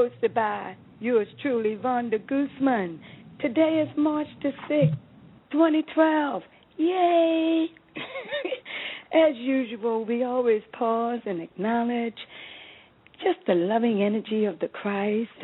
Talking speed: 105 wpm